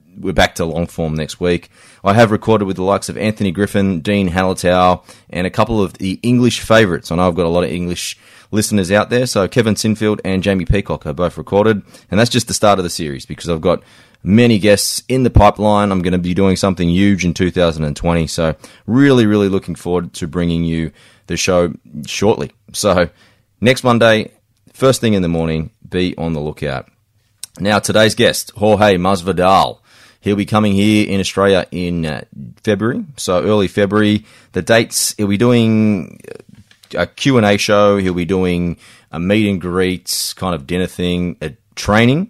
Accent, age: Australian, 20-39